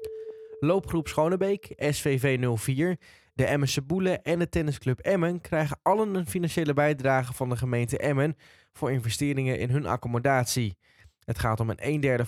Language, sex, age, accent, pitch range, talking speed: Dutch, male, 10-29, Dutch, 120-155 Hz, 150 wpm